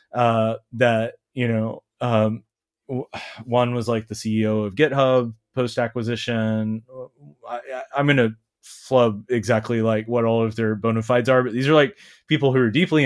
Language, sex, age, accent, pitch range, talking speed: English, male, 30-49, American, 110-125 Hz, 160 wpm